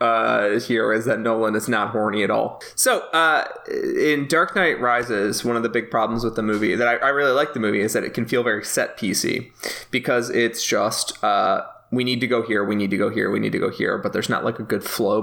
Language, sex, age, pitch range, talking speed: English, male, 20-39, 110-140 Hz, 255 wpm